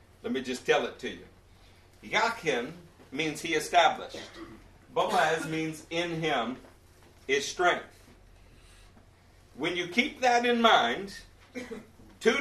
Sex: male